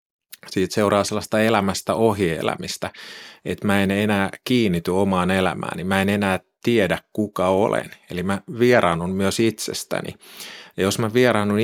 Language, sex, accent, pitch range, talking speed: Finnish, male, native, 90-105 Hz, 145 wpm